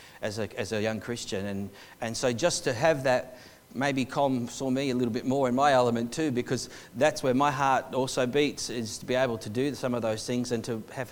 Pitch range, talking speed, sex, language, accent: 125-190 Hz, 235 wpm, male, English, Australian